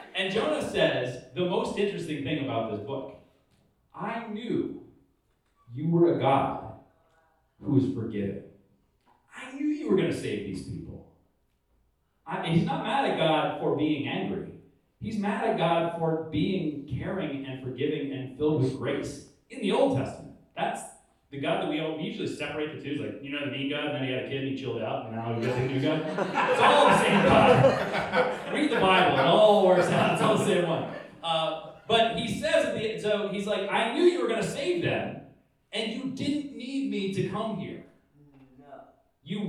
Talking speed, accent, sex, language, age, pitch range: 200 wpm, American, male, English, 30-49, 140-210 Hz